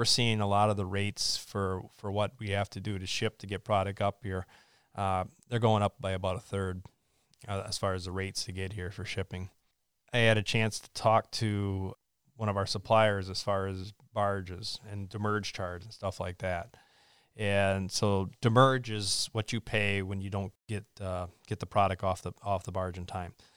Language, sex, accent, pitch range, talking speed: English, male, American, 95-110 Hz, 215 wpm